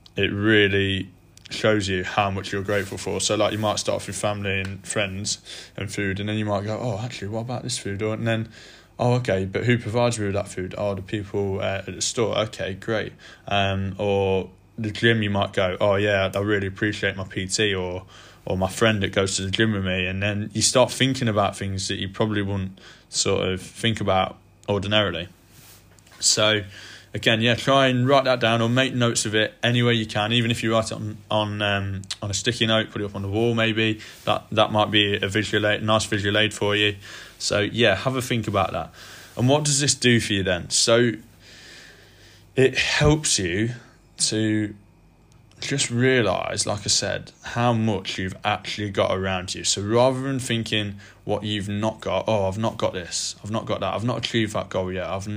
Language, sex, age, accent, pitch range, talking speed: English, male, 20-39, British, 95-115 Hz, 215 wpm